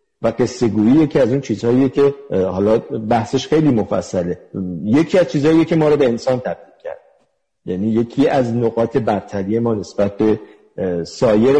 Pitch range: 110-150 Hz